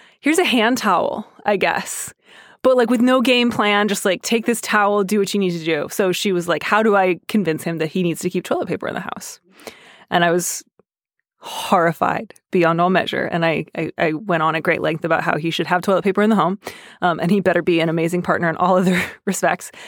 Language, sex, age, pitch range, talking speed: English, female, 20-39, 180-225 Hz, 240 wpm